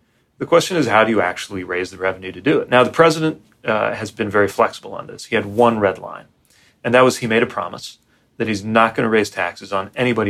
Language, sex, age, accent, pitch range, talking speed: English, male, 30-49, American, 100-130 Hz, 255 wpm